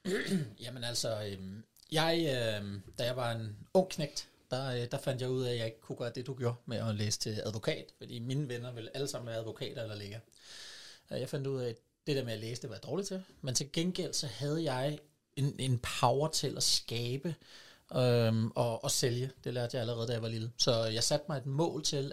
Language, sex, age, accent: Danish, male, 30-49, native